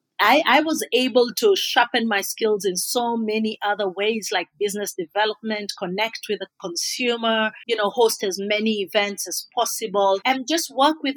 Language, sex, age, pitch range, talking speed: English, female, 40-59, 195-250 Hz, 170 wpm